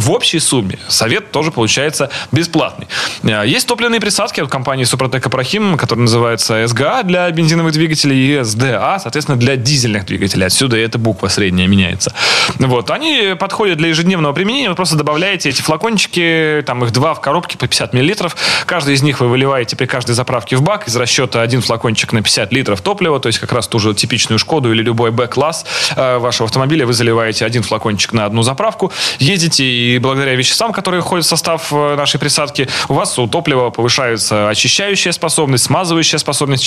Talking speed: 175 wpm